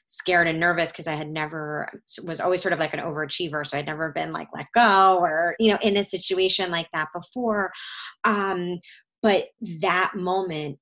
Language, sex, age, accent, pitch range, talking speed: English, female, 20-39, American, 165-200 Hz, 190 wpm